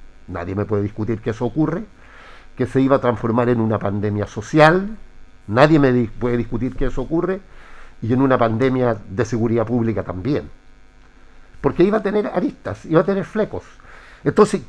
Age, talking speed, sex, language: 50-69, 170 wpm, male, Spanish